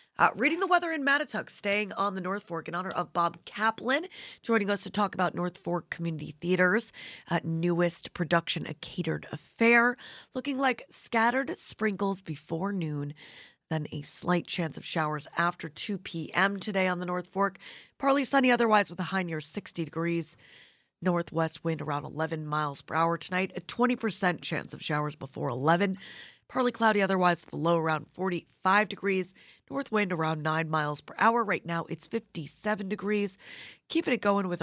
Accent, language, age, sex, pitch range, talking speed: American, English, 30-49, female, 160-205 Hz, 170 wpm